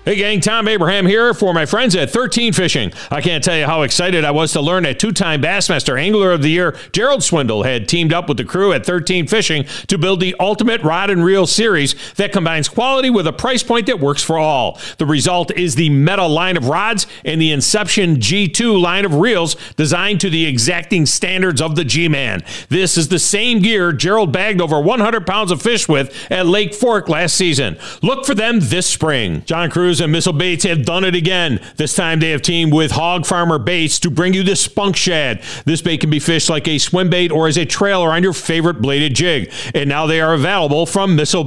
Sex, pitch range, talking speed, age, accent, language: male, 155-195 Hz, 225 wpm, 40-59, American, English